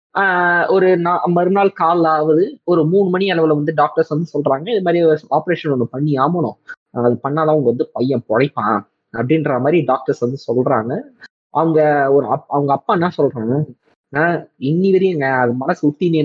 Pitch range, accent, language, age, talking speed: 135-175 Hz, native, Tamil, 20-39, 165 wpm